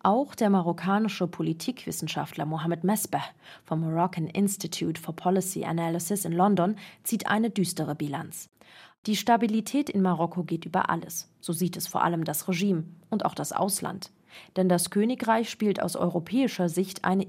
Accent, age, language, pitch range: German, 30-49, German, 170-220 Hz